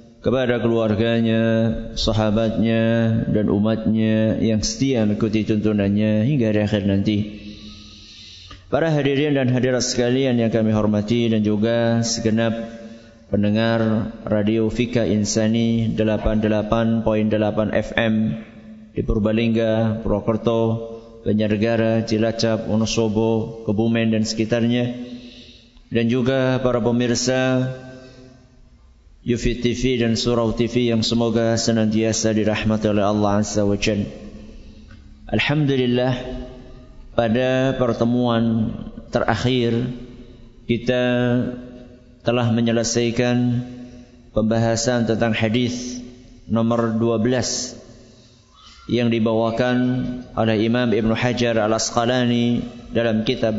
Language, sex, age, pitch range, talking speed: English, male, 20-39, 110-120 Hz, 85 wpm